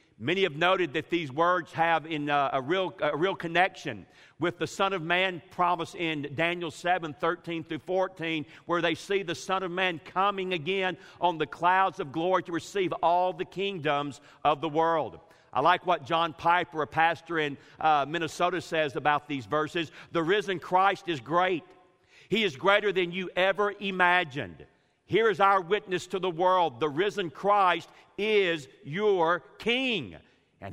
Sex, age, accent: male, 50-69, American